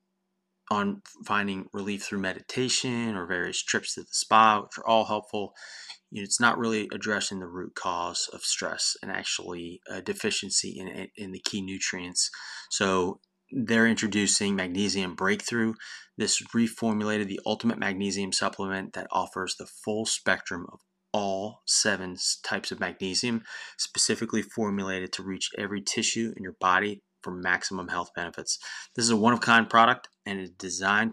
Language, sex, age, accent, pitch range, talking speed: English, male, 20-39, American, 95-115 Hz, 150 wpm